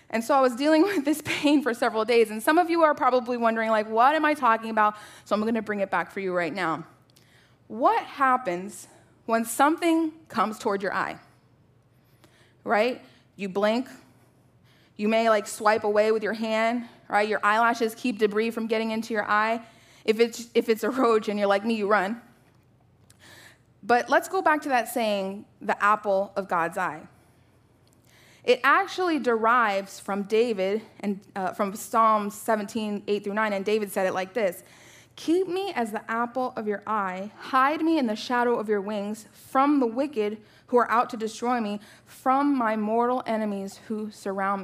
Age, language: 20-39, English